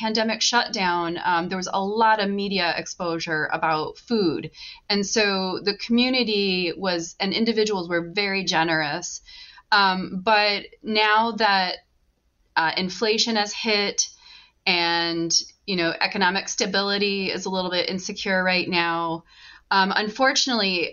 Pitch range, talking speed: 170-215 Hz, 125 wpm